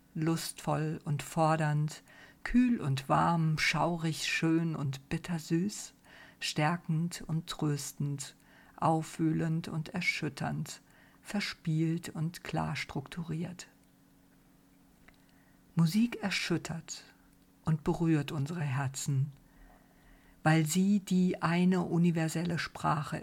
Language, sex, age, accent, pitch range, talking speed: German, female, 50-69, German, 150-170 Hz, 85 wpm